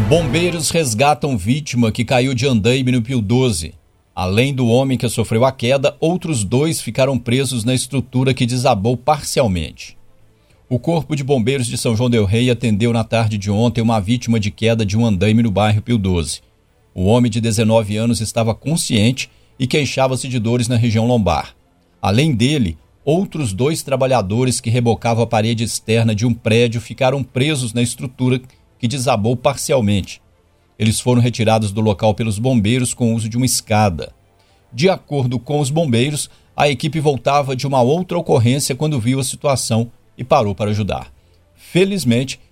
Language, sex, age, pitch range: Portuguese, male, 50-69, 110-135 Hz